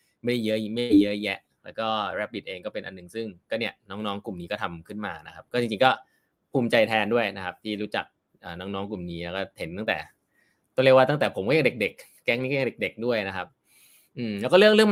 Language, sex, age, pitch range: Thai, male, 20-39, 110-140 Hz